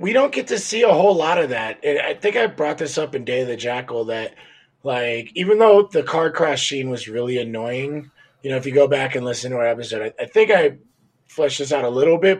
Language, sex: English, male